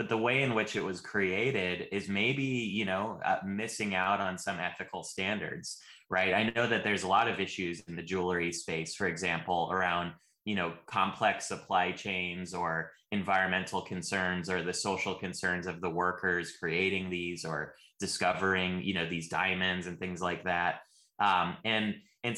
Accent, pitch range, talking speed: American, 90-110 Hz, 175 wpm